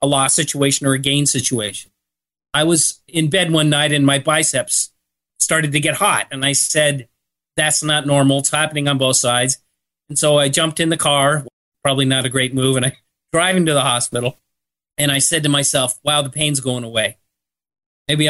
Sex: male